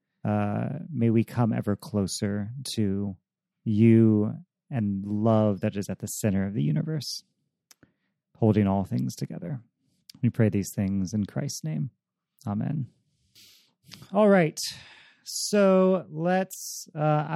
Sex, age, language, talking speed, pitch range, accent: male, 30-49, English, 120 wpm, 115-160 Hz, American